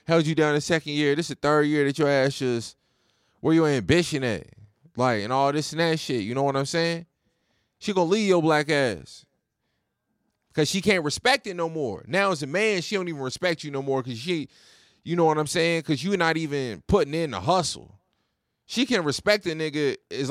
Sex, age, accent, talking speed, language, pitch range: male, 20-39, American, 230 wpm, English, 145-200 Hz